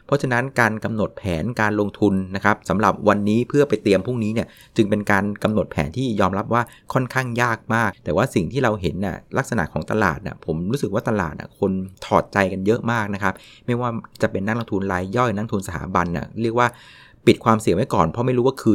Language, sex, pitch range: Thai, male, 100-125 Hz